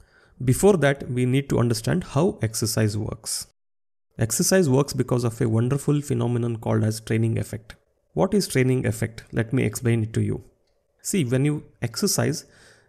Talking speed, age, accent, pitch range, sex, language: 160 wpm, 30-49, native, 110-140 Hz, male, Kannada